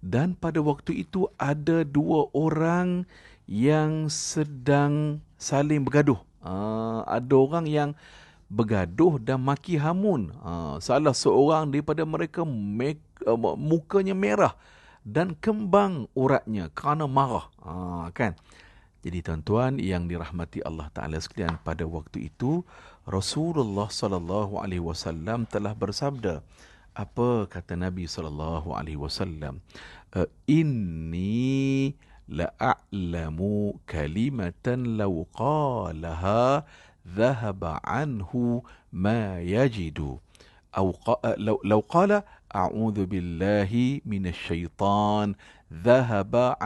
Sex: male